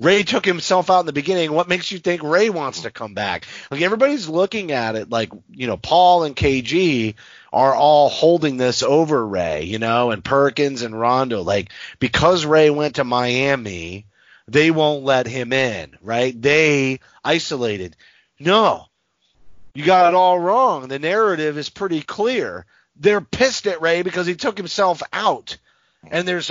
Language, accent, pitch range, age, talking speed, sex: English, American, 140-195 Hz, 30-49, 170 wpm, male